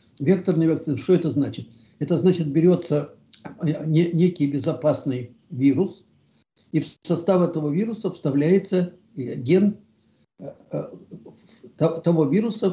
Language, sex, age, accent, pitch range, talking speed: Russian, male, 60-79, native, 140-175 Hz, 95 wpm